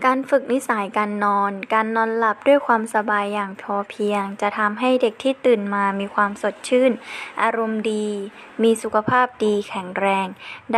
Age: 10-29